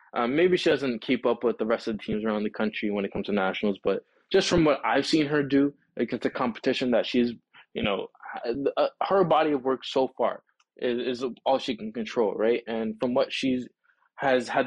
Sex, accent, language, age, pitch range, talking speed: male, American, English, 20-39, 110-130 Hz, 225 wpm